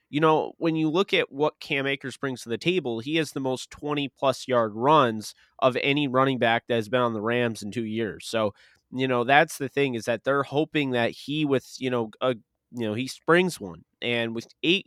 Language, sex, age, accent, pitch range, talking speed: English, male, 20-39, American, 115-135 Hz, 230 wpm